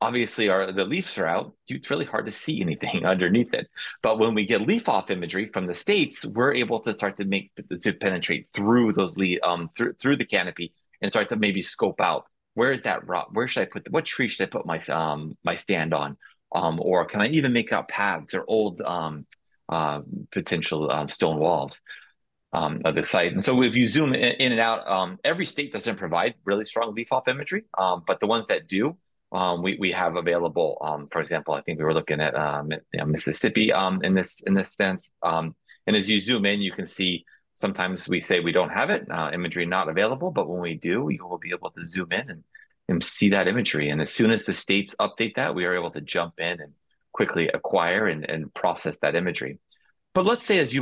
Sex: male